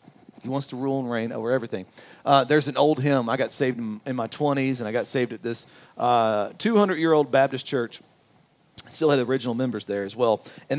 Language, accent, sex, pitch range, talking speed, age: English, American, male, 135-170 Hz, 235 wpm, 40-59